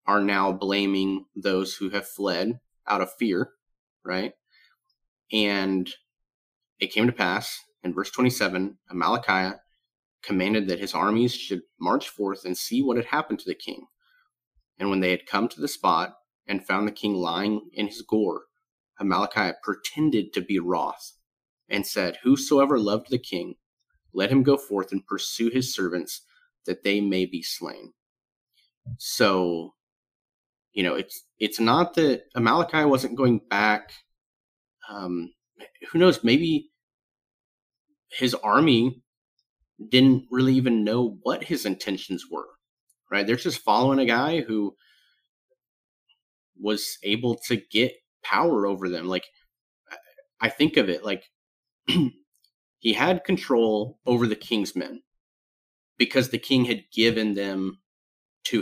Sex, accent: male, American